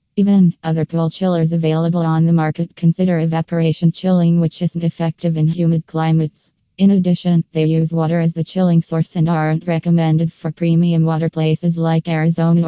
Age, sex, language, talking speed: 20-39, female, English, 165 wpm